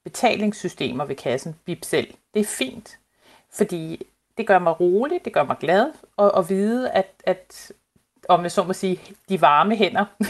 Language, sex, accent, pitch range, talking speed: Danish, female, native, 155-205 Hz, 165 wpm